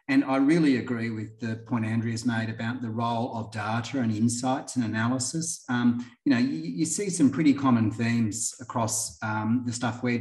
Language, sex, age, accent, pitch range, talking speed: English, male, 30-49, Australian, 110-125 Hz, 195 wpm